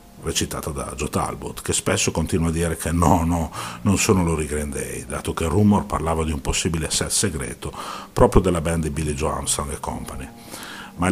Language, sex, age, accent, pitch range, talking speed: Italian, male, 50-69, native, 75-95 Hz, 210 wpm